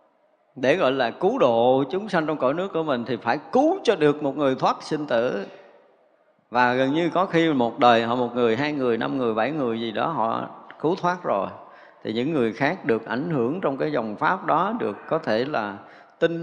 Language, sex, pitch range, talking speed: Vietnamese, male, 120-170 Hz, 225 wpm